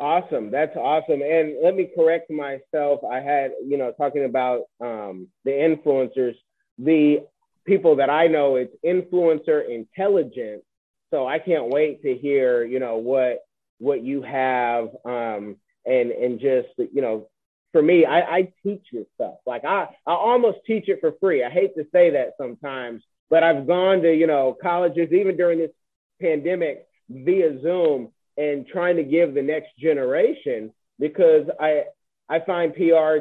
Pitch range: 135-190 Hz